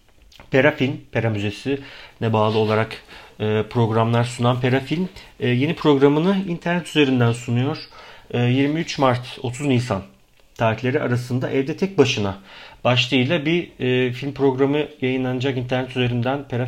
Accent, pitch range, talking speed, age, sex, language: native, 115-145 Hz, 115 wpm, 40-59, male, Turkish